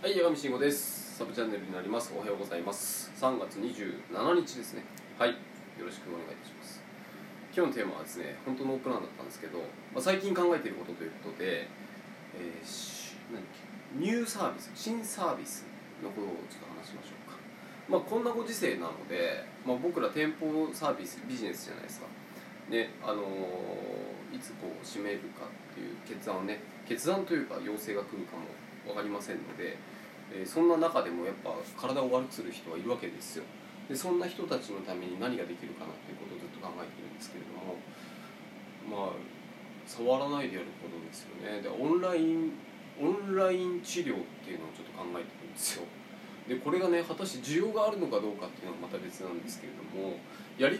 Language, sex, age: Japanese, male, 20-39